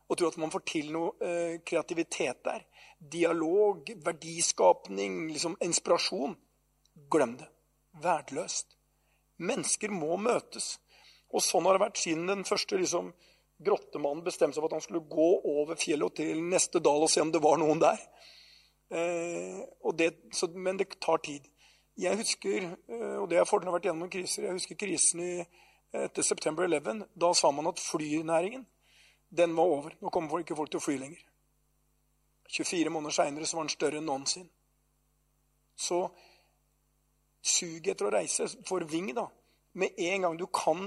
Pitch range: 155-180 Hz